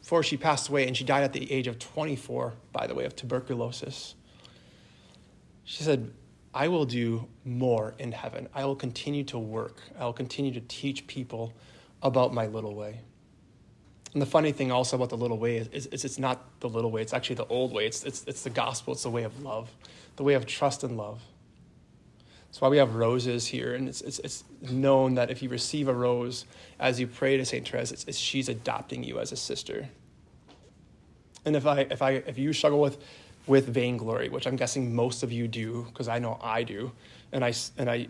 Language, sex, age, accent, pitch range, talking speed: English, male, 20-39, American, 120-135 Hz, 215 wpm